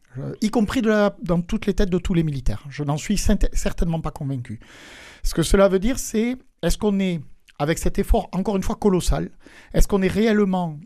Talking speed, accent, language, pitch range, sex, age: 220 wpm, French, French, 135-190 Hz, male, 50-69